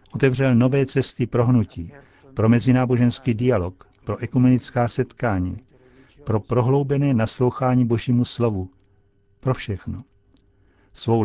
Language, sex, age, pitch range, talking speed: Czech, male, 60-79, 100-130 Hz, 100 wpm